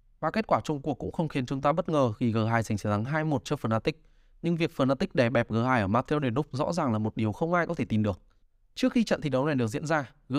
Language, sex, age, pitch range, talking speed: Vietnamese, male, 20-39, 115-155 Hz, 290 wpm